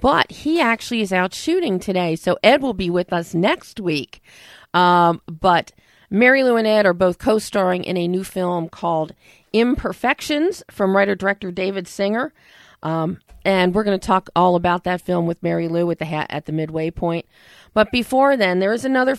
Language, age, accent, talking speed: English, 40-59, American, 190 wpm